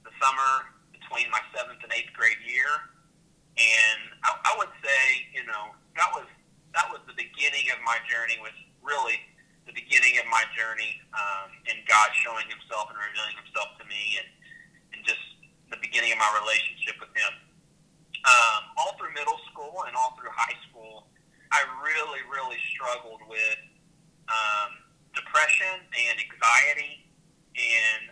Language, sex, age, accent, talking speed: English, male, 30-49, American, 150 wpm